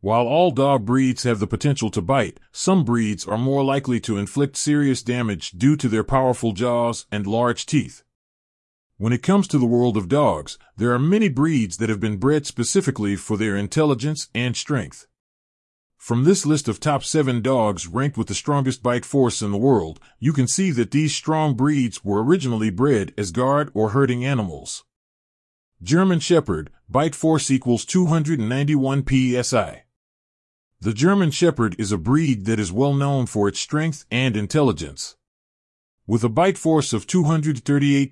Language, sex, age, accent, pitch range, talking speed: English, male, 40-59, American, 110-145 Hz, 170 wpm